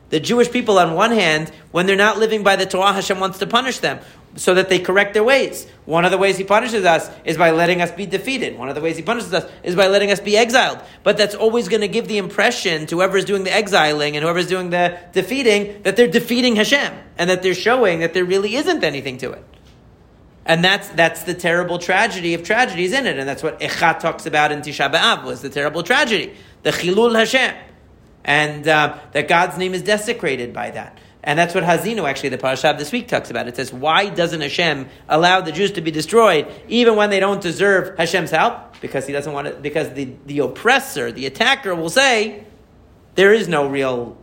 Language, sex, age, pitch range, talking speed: English, male, 40-59, 150-200 Hz, 225 wpm